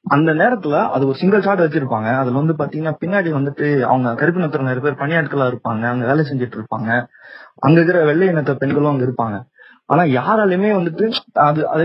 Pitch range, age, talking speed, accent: 140-180 Hz, 30-49, 135 wpm, native